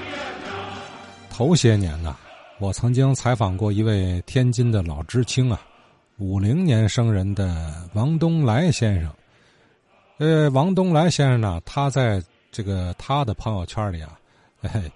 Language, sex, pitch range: Chinese, male, 100-135 Hz